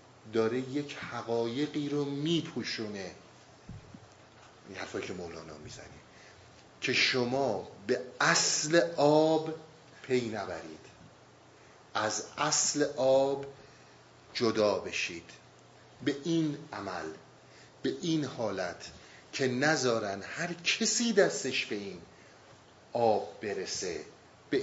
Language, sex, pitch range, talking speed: Persian, male, 115-150 Hz, 90 wpm